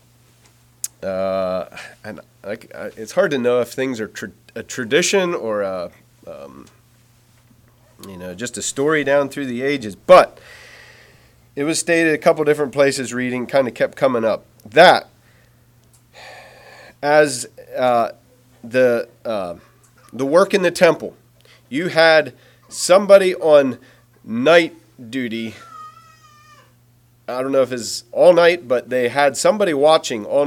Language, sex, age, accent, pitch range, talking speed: English, male, 40-59, American, 120-155 Hz, 135 wpm